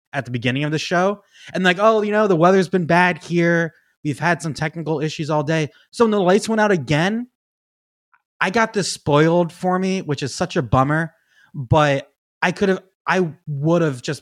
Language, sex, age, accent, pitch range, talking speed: English, male, 20-39, American, 135-175 Hz, 205 wpm